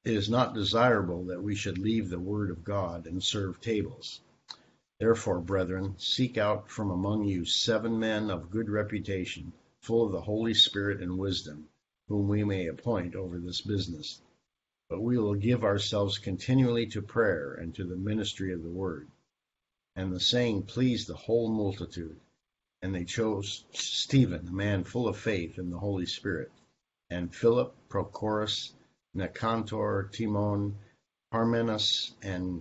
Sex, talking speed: male, 155 wpm